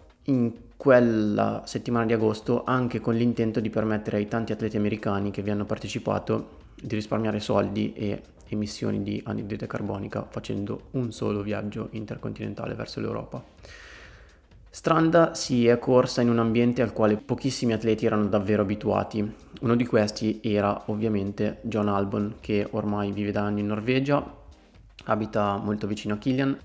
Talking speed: 150 wpm